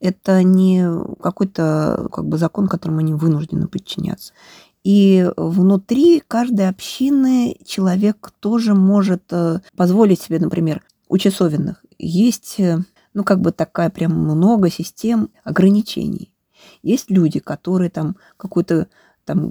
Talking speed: 110 wpm